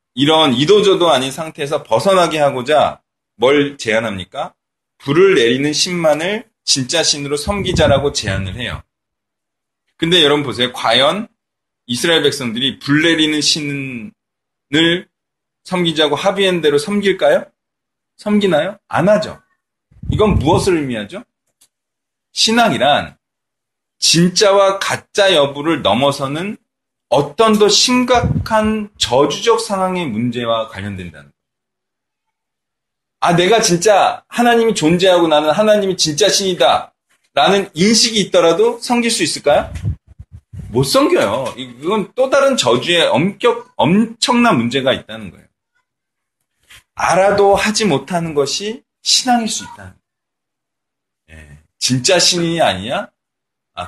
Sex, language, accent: male, Korean, native